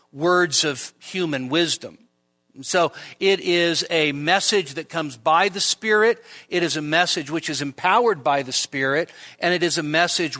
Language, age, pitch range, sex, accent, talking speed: English, 50-69, 135-170 Hz, male, American, 165 wpm